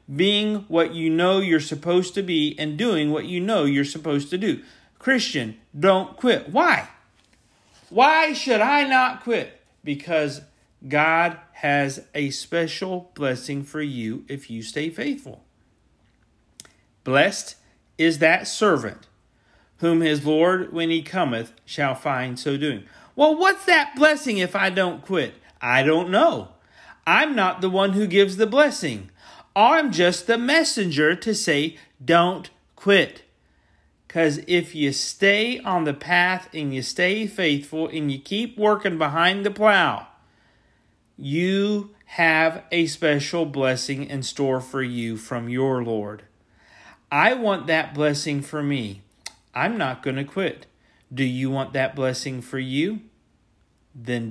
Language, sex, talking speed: English, male, 140 wpm